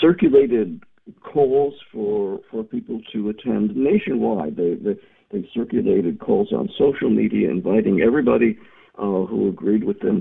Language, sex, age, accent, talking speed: English, male, 50-69, American, 135 wpm